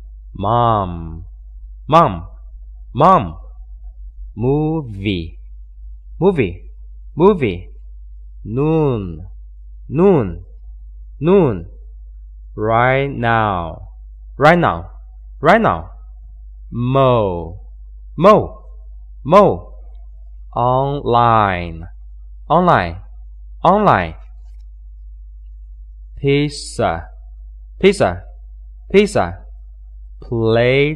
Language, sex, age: Chinese, male, 20-39